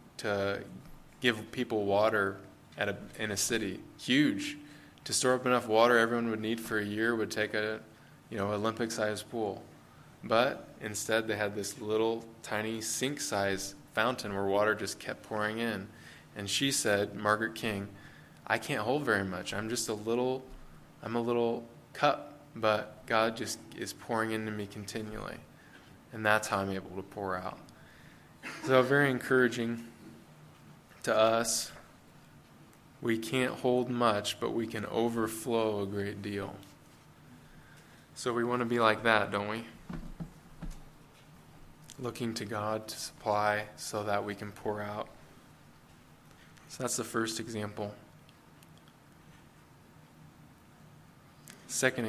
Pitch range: 105-120 Hz